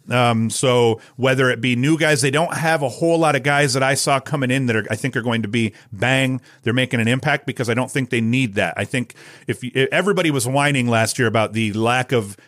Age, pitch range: 40-59, 115-140 Hz